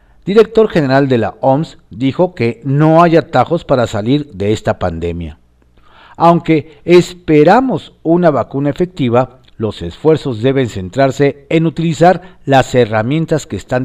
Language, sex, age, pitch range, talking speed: Spanish, male, 50-69, 110-155 Hz, 130 wpm